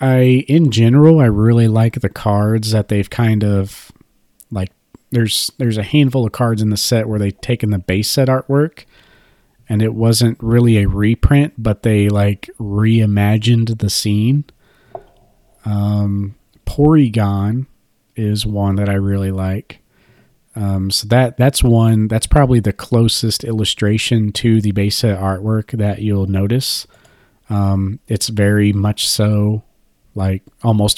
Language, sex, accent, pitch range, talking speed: English, male, American, 105-115 Hz, 145 wpm